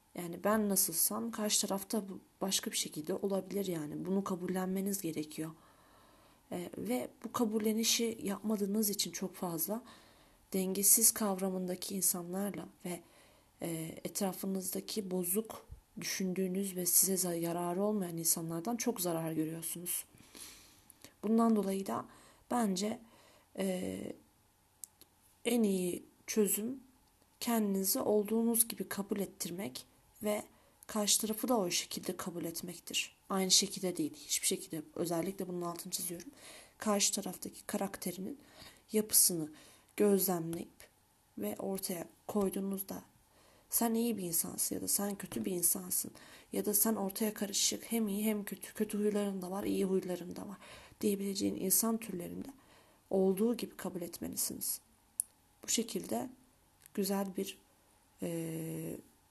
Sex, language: female, Turkish